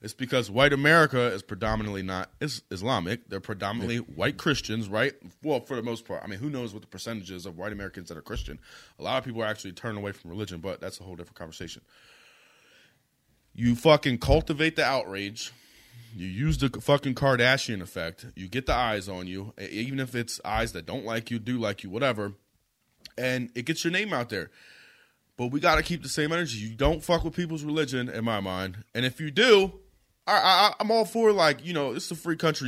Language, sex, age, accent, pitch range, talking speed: English, male, 30-49, American, 110-170 Hz, 210 wpm